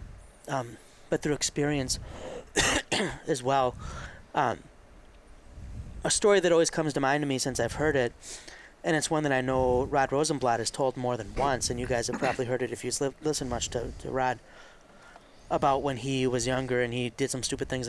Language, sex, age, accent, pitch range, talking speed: English, male, 30-49, American, 125-150 Hz, 195 wpm